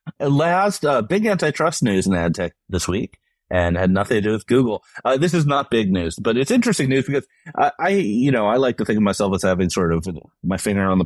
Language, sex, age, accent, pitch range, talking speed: English, male, 30-49, American, 95-135 Hz, 255 wpm